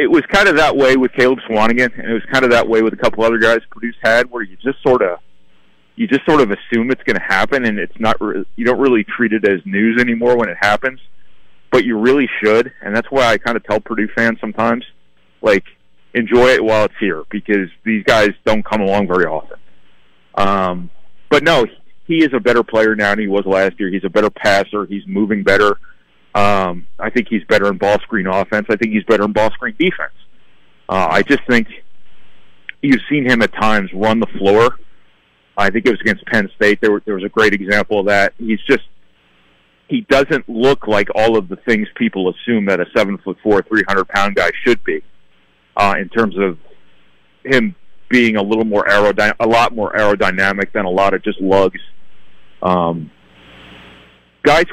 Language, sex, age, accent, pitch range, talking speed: English, male, 30-49, American, 90-115 Hz, 210 wpm